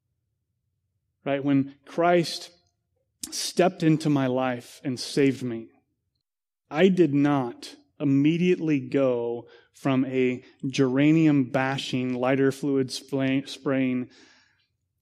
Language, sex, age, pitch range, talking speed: English, male, 30-49, 125-175 Hz, 75 wpm